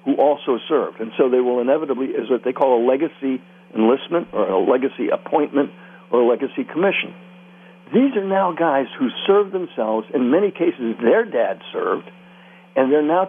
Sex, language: male, English